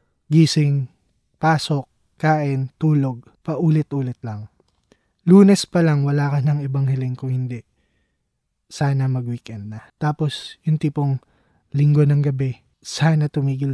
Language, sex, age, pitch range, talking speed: Filipino, male, 20-39, 115-145 Hz, 115 wpm